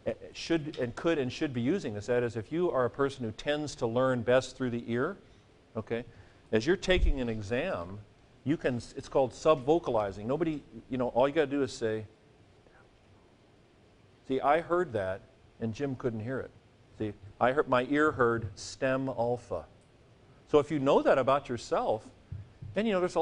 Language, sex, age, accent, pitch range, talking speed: English, male, 50-69, American, 110-145 Hz, 185 wpm